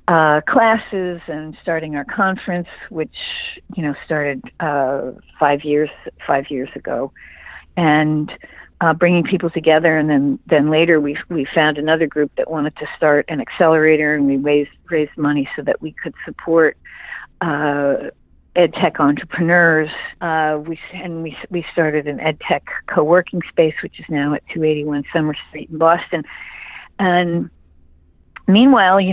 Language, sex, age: English, female, 50-69